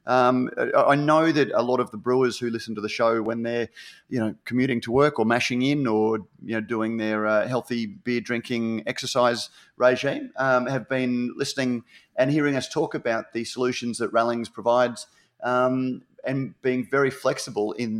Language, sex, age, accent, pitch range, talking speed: English, male, 30-49, Australian, 110-130 Hz, 185 wpm